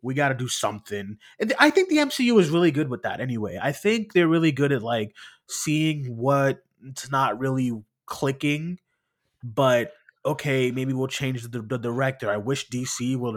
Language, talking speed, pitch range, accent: English, 180 wpm, 115-150 Hz, American